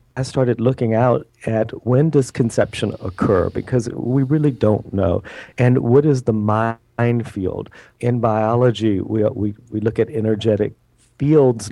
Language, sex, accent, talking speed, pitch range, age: English, male, American, 150 wpm, 110-125 Hz, 40-59